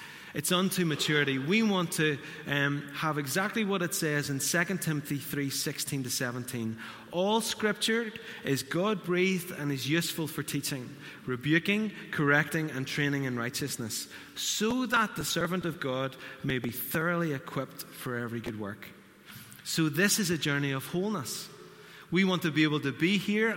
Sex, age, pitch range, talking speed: male, 30-49, 135-180 Hz, 160 wpm